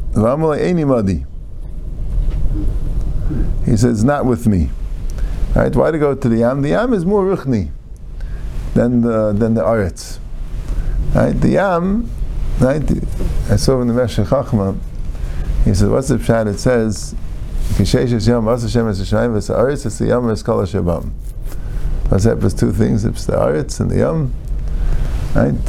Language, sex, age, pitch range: English, male, 50-69, 95-120 Hz